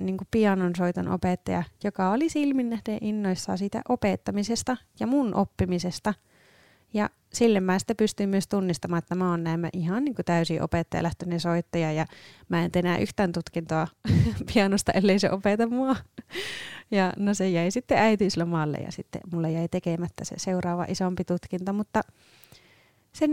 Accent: native